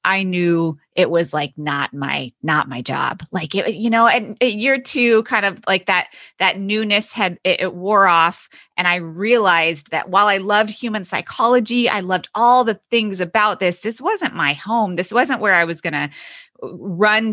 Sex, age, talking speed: female, 20-39, 195 wpm